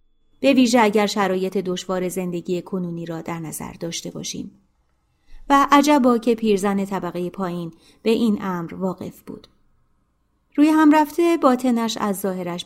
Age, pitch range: 30-49, 180-245 Hz